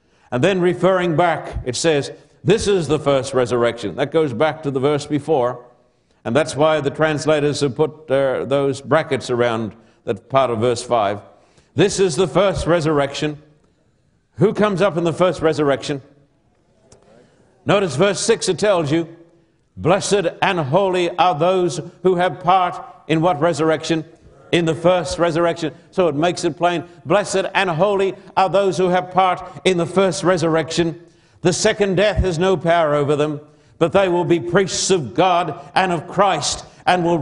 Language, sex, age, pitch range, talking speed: English, male, 60-79, 150-185 Hz, 170 wpm